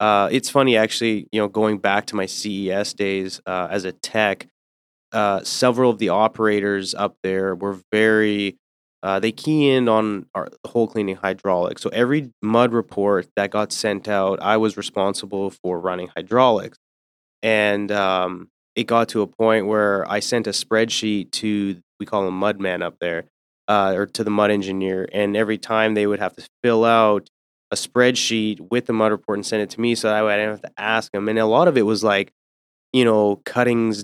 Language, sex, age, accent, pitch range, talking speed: English, male, 20-39, American, 95-115 Hz, 195 wpm